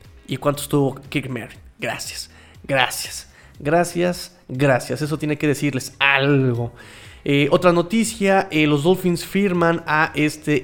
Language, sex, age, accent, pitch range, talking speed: Spanish, male, 30-49, Mexican, 130-155 Hz, 125 wpm